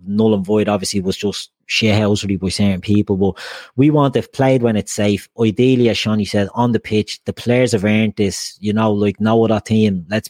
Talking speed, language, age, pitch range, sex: 235 wpm, English, 30-49, 100-115 Hz, male